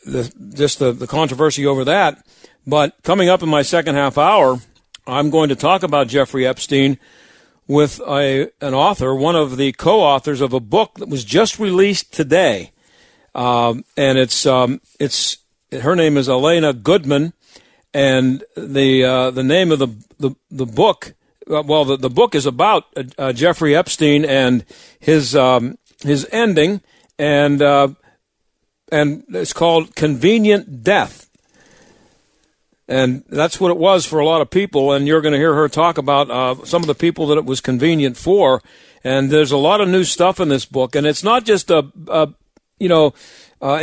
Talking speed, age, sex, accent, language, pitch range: 175 wpm, 60-79, male, American, English, 135-165 Hz